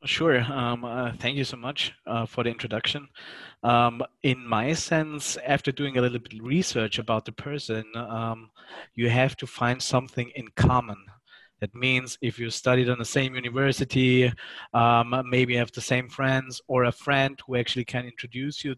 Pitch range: 120-135 Hz